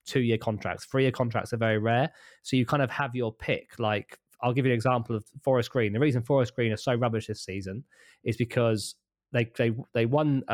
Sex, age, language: male, 20-39, English